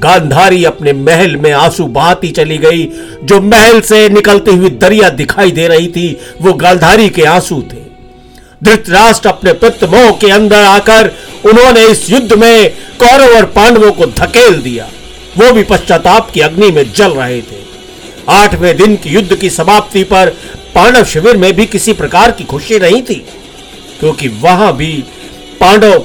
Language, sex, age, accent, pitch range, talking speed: Hindi, male, 50-69, native, 155-215 Hz, 155 wpm